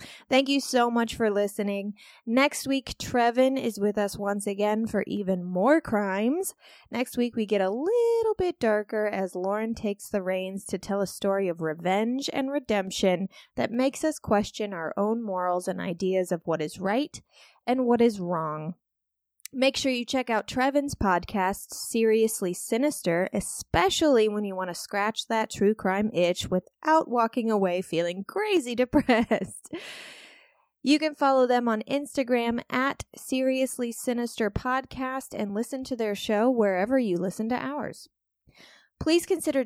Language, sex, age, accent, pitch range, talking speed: English, female, 20-39, American, 195-265 Hz, 155 wpm